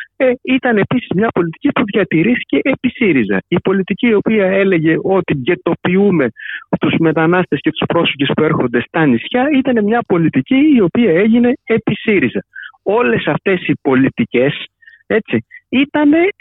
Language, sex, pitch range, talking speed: Greek, male, 150-225 Hz, 140 wpm